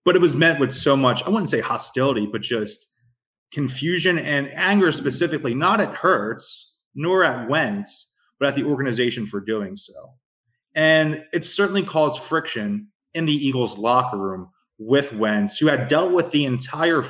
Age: 20-39